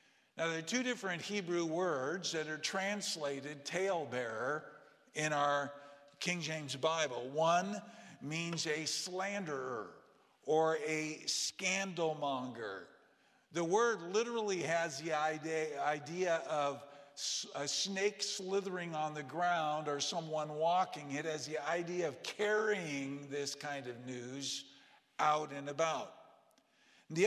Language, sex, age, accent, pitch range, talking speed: English, male, 50-69, American, 150-190 Hz, 120 wpm